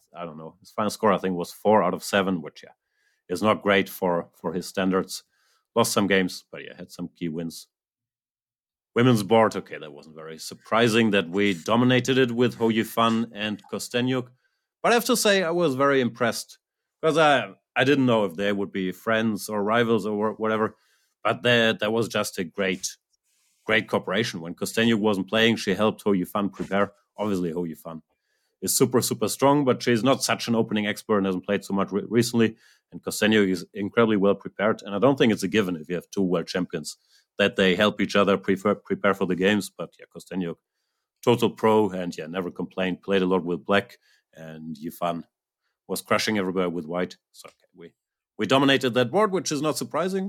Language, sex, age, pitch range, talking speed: English, male, 30-49, 95-120 Hz, 200 wpm